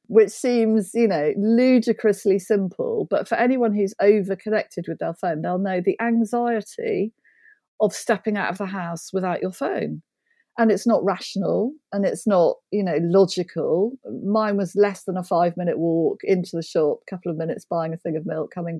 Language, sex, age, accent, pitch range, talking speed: English, female, 40-59, British, 175-220 Hz, 180 wpm